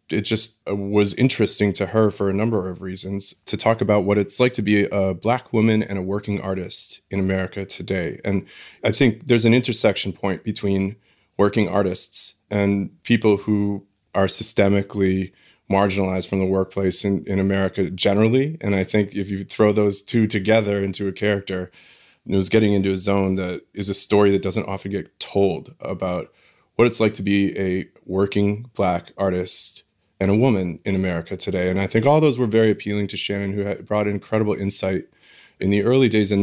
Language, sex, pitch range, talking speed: English, male, 95-105 Hz, 190 wpm